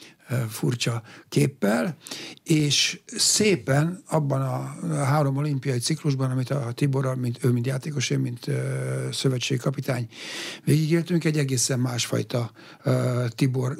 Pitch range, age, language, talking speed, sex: 125-150 Hz, 60-79, Hungarian, 110 wpm, male